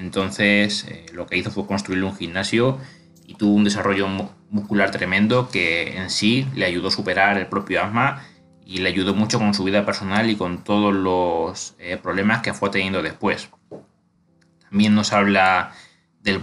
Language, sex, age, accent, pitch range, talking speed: Spanish, male, 20-39, Spanish, 95-105 Hz, 170 wpm